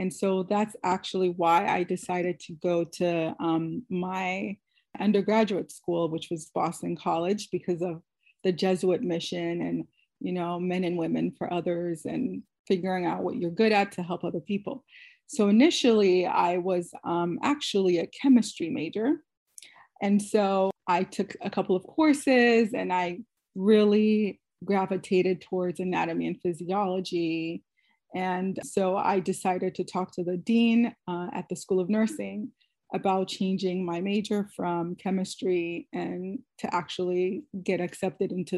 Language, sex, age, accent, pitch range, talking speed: English, female, 30-49, American, 180-215 Hz, 145 wpm